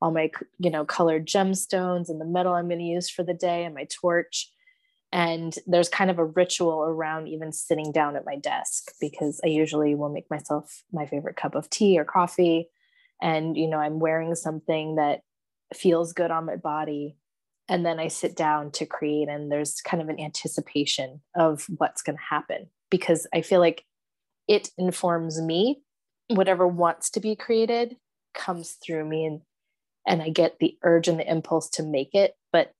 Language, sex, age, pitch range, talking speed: English, female, 20-39, 155-180 Hz, 190 wpm